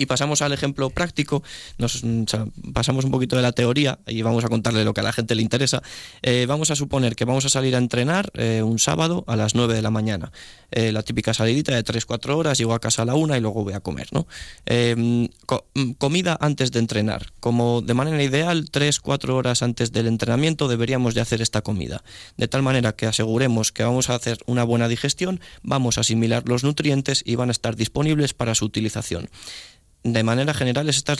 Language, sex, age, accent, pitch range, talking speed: Spanish, male, 20-39, Spanish, 115-135 Hz, 215 wpm